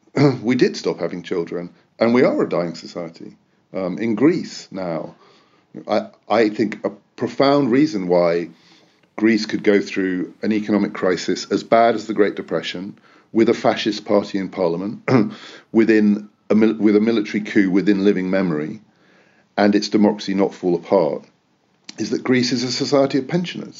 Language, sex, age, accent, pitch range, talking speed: English, male, 50-69, British, 90-110 Hz, 165 wpm